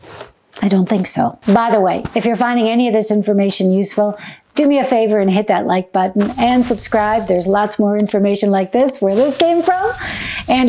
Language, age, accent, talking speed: English, 50-69, American, 210 wpm